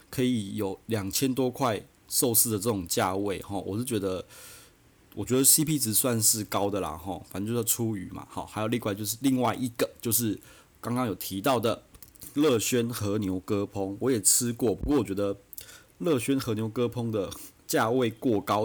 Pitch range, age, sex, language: 100-120 Hz, 30-49, male, Chinese